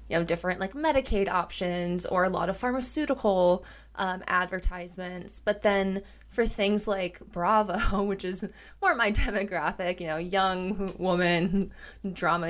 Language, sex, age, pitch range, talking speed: English, female, 20-39, 180-210 Hz, 140 wpm